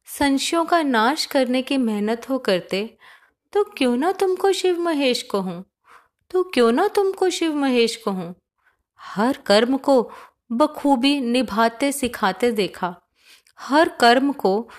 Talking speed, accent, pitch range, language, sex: 130 wpm, native, 200-275 Hz, Hindi, female